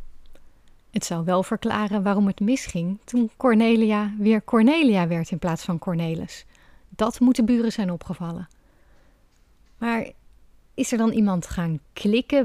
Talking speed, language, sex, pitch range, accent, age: 135 wpm, Dutch, female, 175-230 Hz, Dutch, 30-49